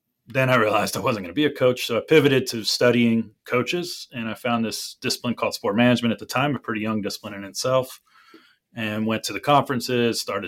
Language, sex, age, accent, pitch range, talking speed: English, male, 30-49, American, 110-125 Hz, 225 wpm